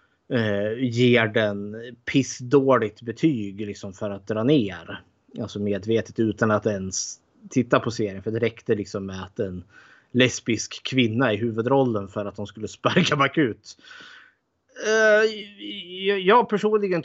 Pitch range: 110-145 Hz